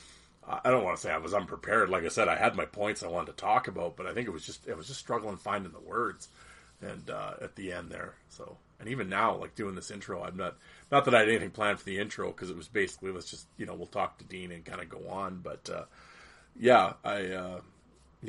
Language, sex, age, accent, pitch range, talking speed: English, male, 30-49, American, 95-120 Hz, 265 wpm